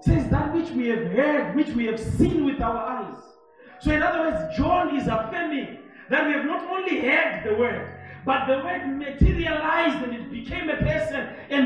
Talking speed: 195 wpm